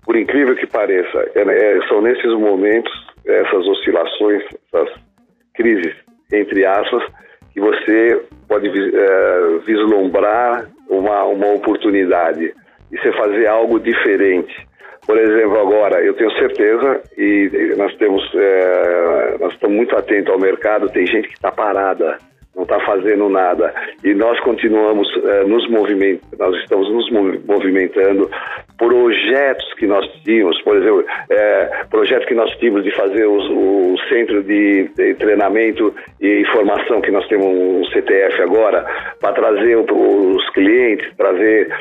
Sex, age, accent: male, 50-69, Brazilian